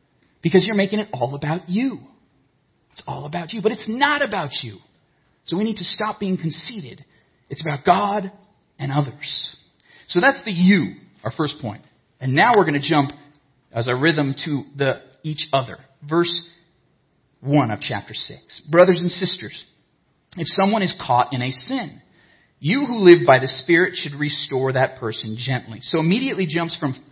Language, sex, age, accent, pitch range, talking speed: English, male, 40-59, American, 130-175 Hz, 175 wpm